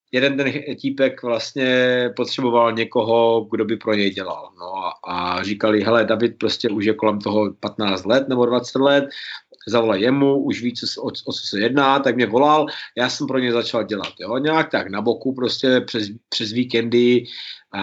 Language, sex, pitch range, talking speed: Slovak, male, 115-140 Hz, 190 wpm